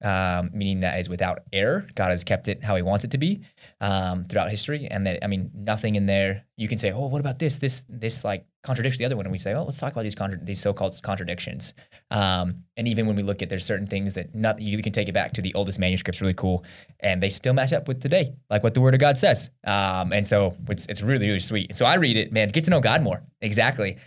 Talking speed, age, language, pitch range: 270 wpm, 20-39, English, 95-125 Hz